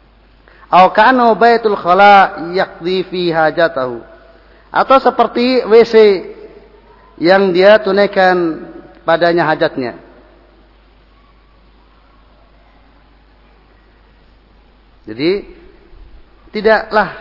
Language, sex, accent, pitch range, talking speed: Indonesian, male, native, 175-245 Hz, 50 wpm